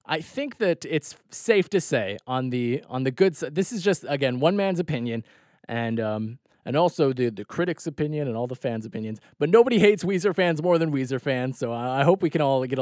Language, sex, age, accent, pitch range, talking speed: English, male, 20-39, American, 125-165 Hz, 230 wpm